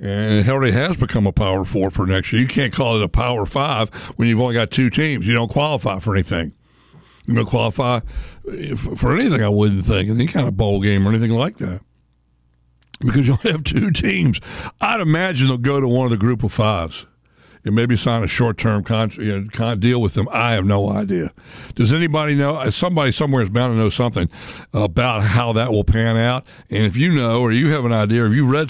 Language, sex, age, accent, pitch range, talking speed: English, male, 60-79, American, 110-130 Hz, 220 wpm